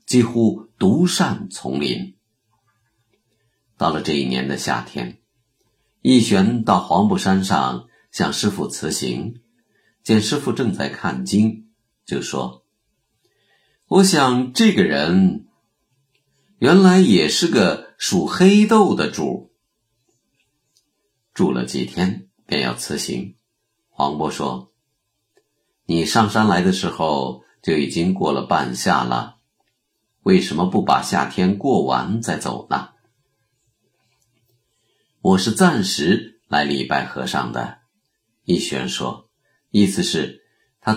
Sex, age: male, 50-69